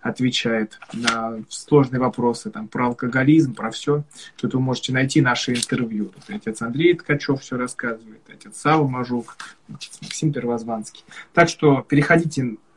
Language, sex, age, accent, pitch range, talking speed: Russian, male, 20-39, native, 125-155 Hz, 135 wpm